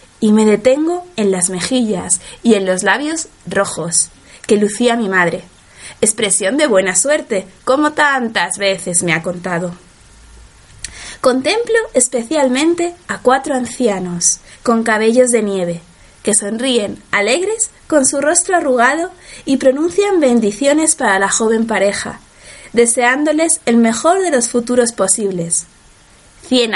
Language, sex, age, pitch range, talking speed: Spanish, female, 20-39, 195-290 Hz, 125 wpm